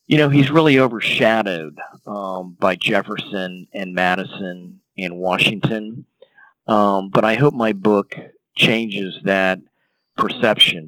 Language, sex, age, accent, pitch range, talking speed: English, male, 40-59, American, 95-110 Hz, 115 wpm